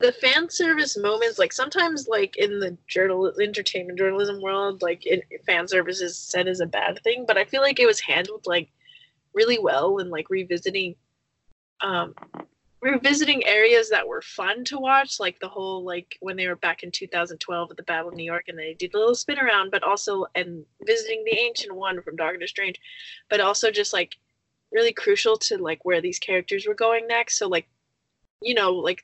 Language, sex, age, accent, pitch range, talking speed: English, female, 20-39, American, 180-270 Hz, 200 wpm